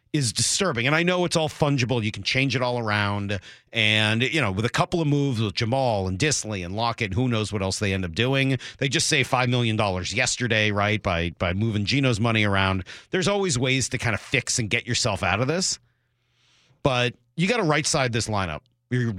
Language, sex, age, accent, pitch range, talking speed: English, male, 40-59, American, 105-135 Hz, 215 wpm